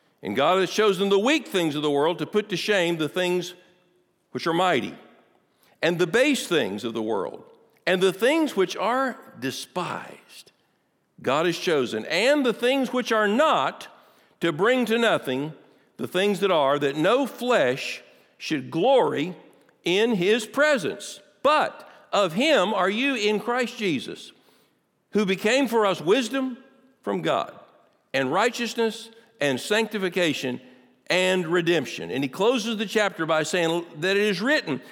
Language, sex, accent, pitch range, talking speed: English, male, American, 155-225 Hz, 155 wpm